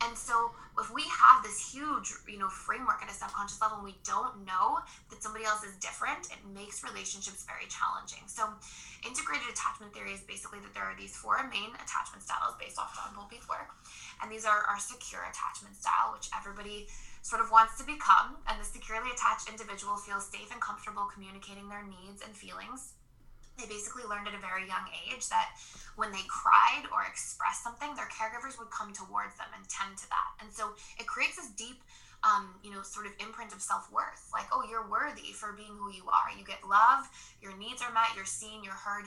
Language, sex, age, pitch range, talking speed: English, female, 20-39, 200-225 Hz, 205 wpm